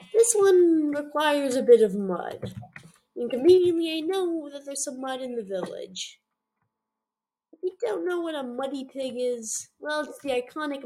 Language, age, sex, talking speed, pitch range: English, 20-39, female, 160 wpm, 195-300 Hz